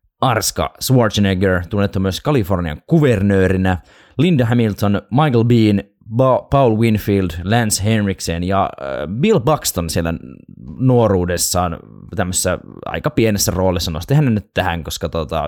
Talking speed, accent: 110 wpm, native